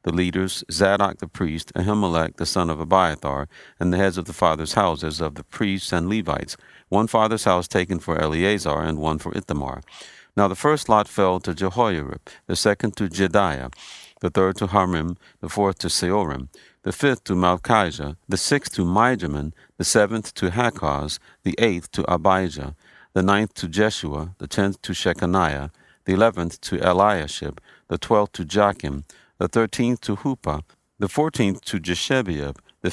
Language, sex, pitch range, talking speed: English, male, 80-105 Hz, 170 wpm